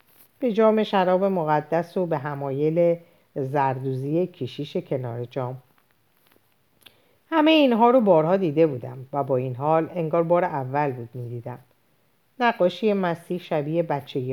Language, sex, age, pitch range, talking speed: Persian, female, 50-69, 135-185 Hz, 120 wpm